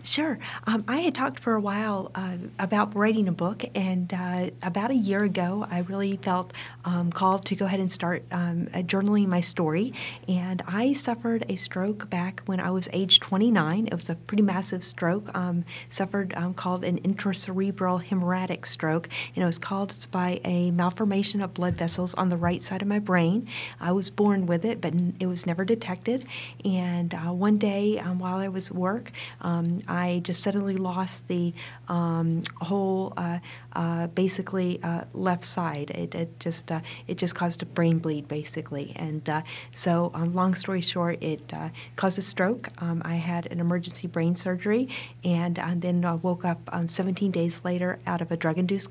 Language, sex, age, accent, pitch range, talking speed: English, female, 40-59, American, 170-195 Hz, 190 wpm